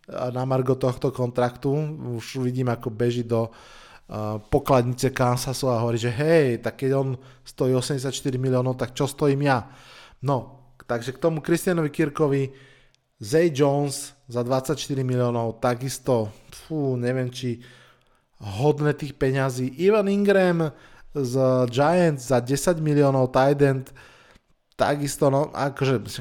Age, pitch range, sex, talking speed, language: 20-39, 125-140 Hz, male, 120 wpm, Slovak